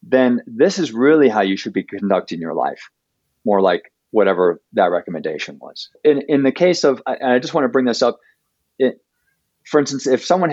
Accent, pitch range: American, 110-145 Hz